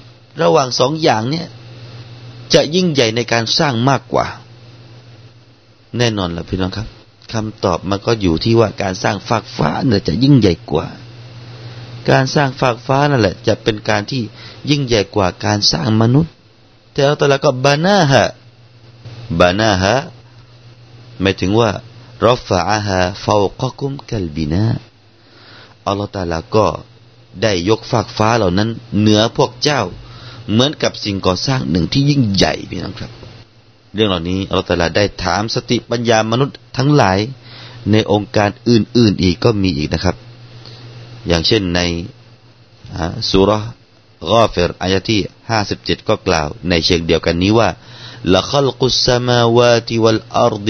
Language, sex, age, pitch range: Thai, male, 30-49, 100-120 Hz